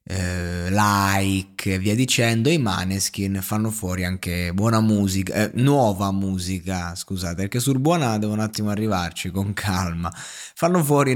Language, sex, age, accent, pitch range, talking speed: Italian, male, 20-39, native, 90-110 Hz, 140 wpm